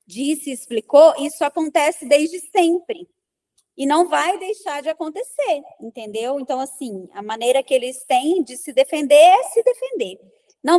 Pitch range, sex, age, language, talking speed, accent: 260-345 Hz, female, 20-39, Portuguese, 150 wpm, Brazilian